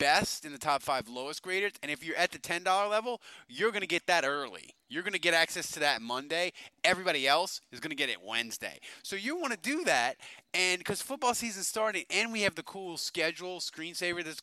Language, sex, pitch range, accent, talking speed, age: English, male, 145-195 Hz, American, 215 wpm, 20-39